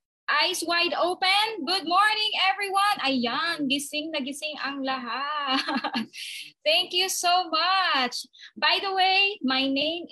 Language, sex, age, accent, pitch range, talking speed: Filipino, female, 20-39, native, 260-345 Hz, 125 wpm